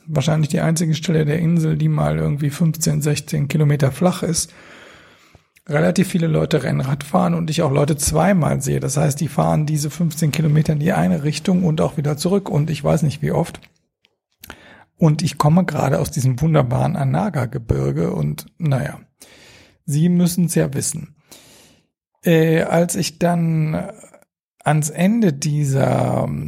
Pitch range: 135-170 Hz